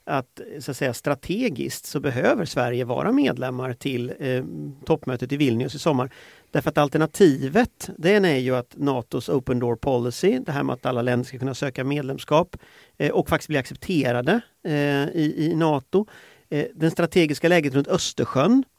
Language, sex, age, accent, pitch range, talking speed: Swedish, male, 40-59, native, 130-175 Hz, 170 wpm